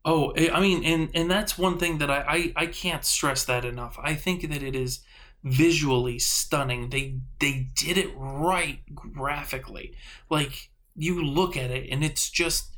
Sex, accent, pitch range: male, American, 130-165 Hz